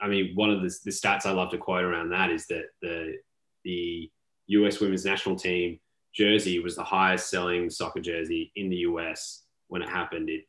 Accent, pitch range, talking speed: Australian, 90-110 Hz, 200 wpm